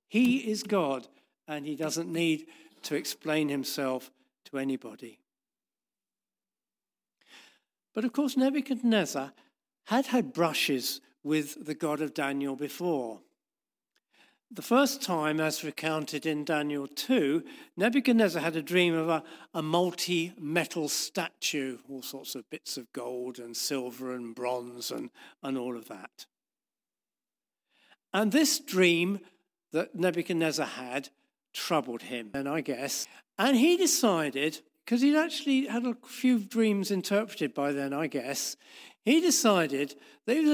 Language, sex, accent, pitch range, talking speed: English, male, British, 145-220 Hz, 130 wpm